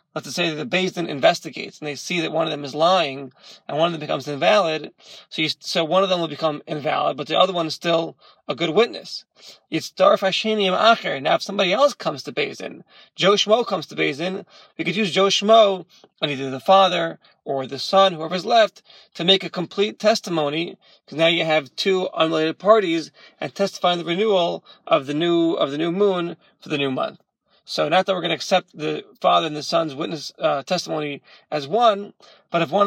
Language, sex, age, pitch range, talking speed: English, male, 30-49, 155-200 Hz, 210 wpm